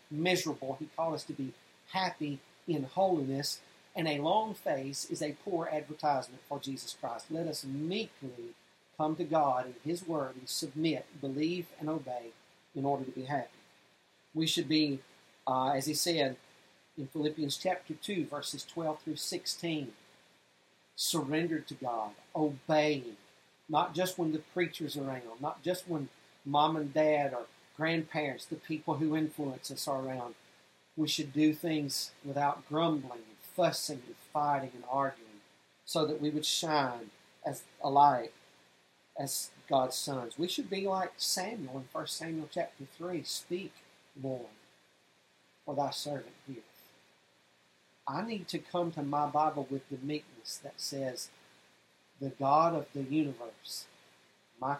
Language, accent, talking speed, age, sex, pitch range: English, American, 150 wpm, 40-59, male, 135-160 Hz